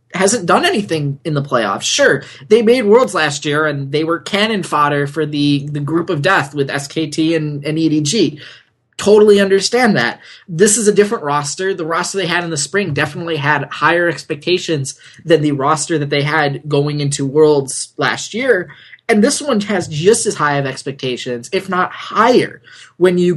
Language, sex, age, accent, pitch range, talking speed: English, male, 20-39, American, 145-200 Hz, 185 wpm